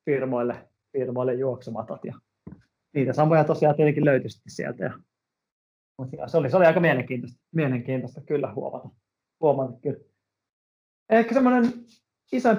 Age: 30-49